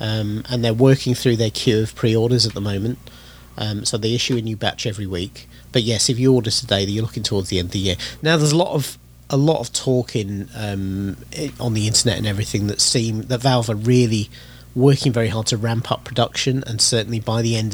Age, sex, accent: 40-59, male, British